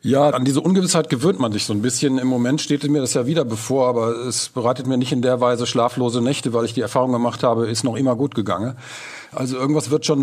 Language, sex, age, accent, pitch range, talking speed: German, male, 50-69, German, 105-135 Hz, 250 wpm